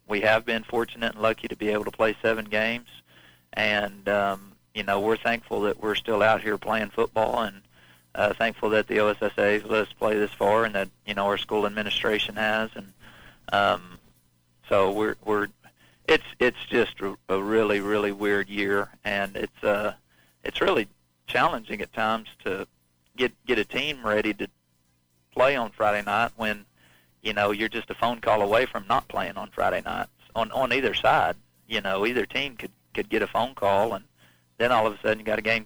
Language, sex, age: English, male, 40-59